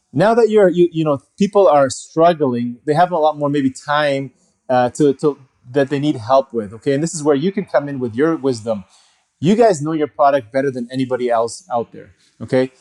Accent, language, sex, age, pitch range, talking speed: American, English, male, 30-49, 130-160 Hz, 225 wpm